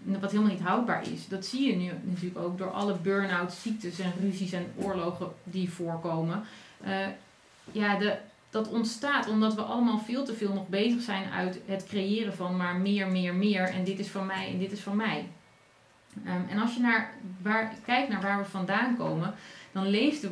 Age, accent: 30-49, Dutch